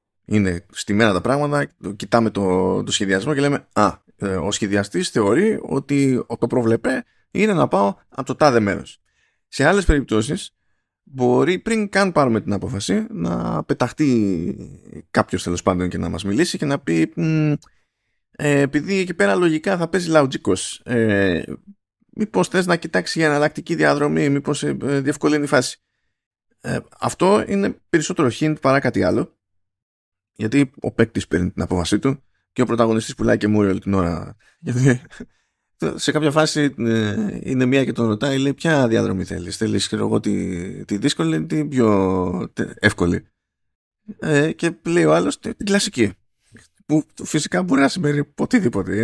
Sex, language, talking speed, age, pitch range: male, Greek, 155 wpm, 20-39, 100-145 Hz